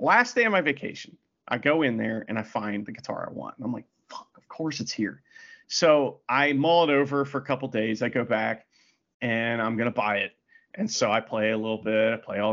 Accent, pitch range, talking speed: American, 110-155 Hz, 255 wpm